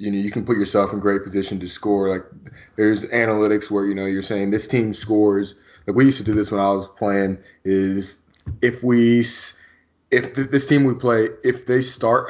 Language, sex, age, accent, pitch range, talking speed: English, male, 20-39, American, 95-120 Hz, 210 wpm